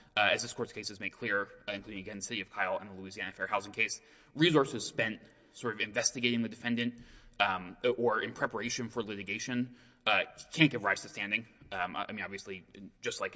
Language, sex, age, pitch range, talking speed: English, male, 20-39, 100-120 Hz, 205 wpm